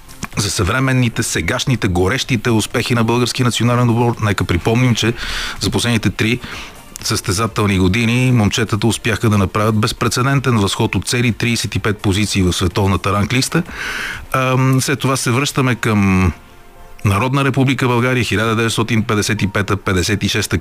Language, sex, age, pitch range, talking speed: Bulgarian, male, 30-49, 100-120 Hz, 110 wpm